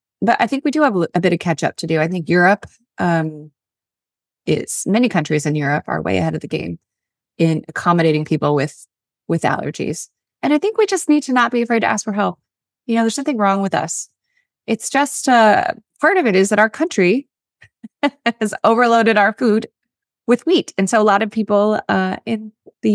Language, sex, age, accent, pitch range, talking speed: English, female, 20-39, American, 165-235 Hz, 210 wpm